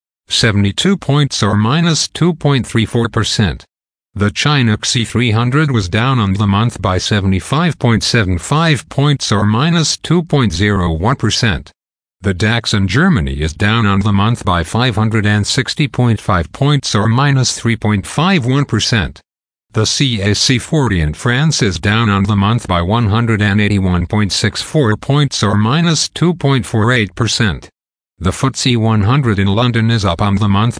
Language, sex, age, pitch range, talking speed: English, male, 50-69, 100-125 Hz, 115 wpm